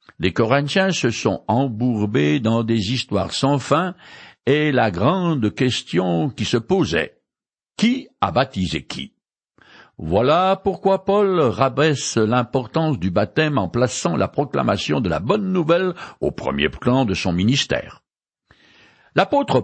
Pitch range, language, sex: 115-180 Hz, French, male